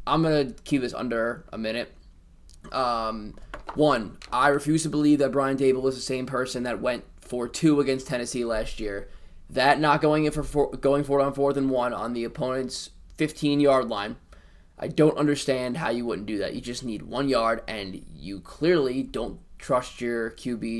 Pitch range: 110-140 Hz